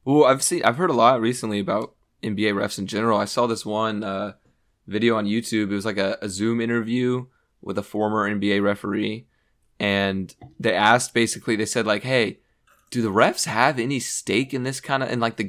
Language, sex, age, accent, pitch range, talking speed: English, male, 20-39, American, 105-120 Hz, 210 wpm